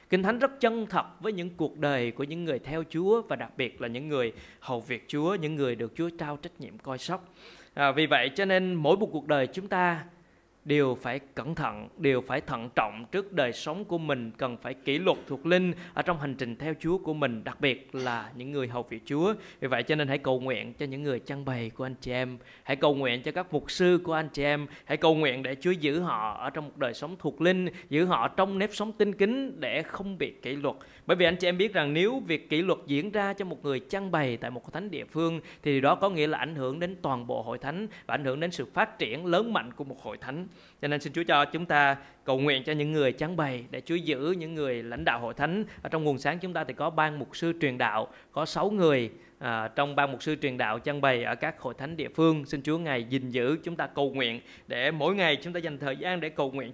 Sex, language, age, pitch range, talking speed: male, Vietnamese, 20-39, 135-170 Hz, 270 wpm